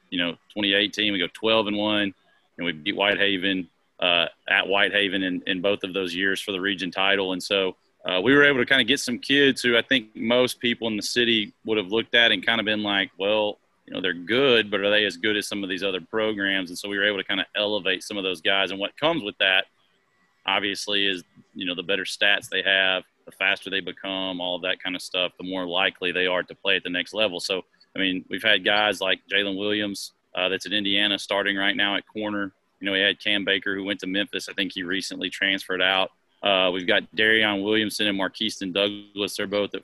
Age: 30-49